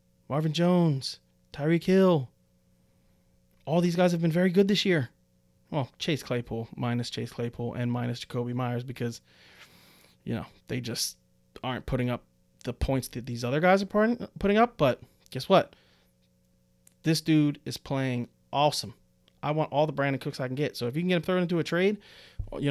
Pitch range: 120-175 Hz